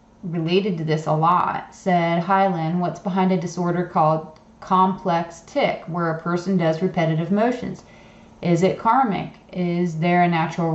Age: 30-49